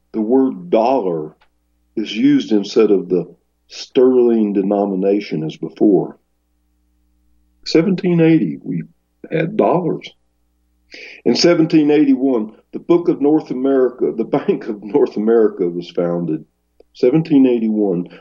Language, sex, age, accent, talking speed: English, male, 60-79, American, 100 wpm